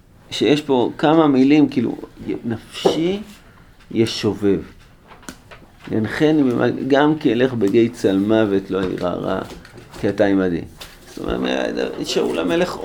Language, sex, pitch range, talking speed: Hebrew, male, 110-150 Hz, 105 wpm